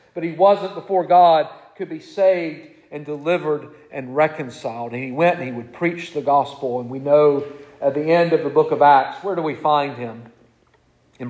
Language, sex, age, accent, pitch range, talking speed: English, male, 50-69, American, 120-155 Hz, 200 wpm